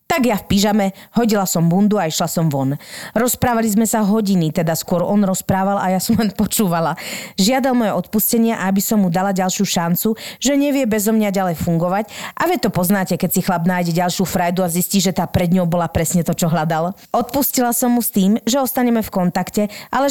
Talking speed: 205 wpm